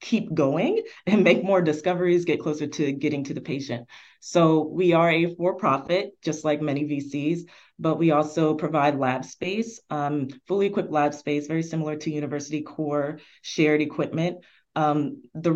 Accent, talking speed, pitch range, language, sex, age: American, 160 wpm, 145-175 Hz, English, female, 20-39